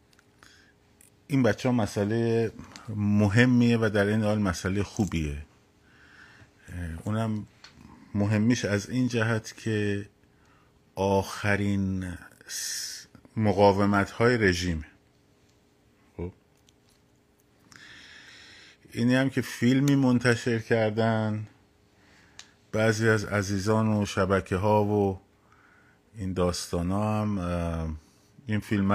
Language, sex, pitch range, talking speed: Persian, male, 90-110 Hz, 85 wpm